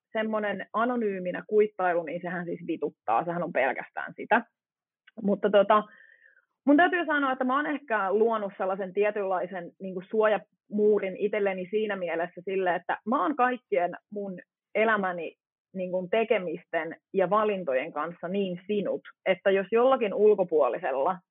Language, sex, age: Finnish, female, 30-49